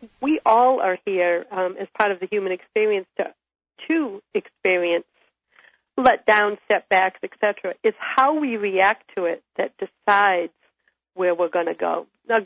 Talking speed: 155 wpm